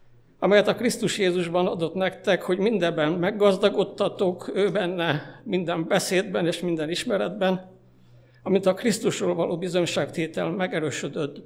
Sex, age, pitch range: male, 60-79, 160-205 Hz